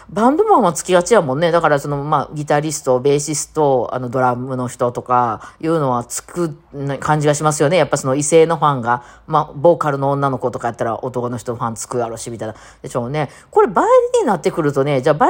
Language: Japanese